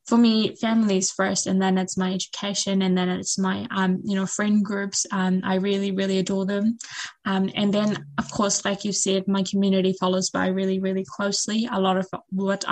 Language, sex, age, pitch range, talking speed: English, female, 10-29, 190-200 Hz, 205 wpm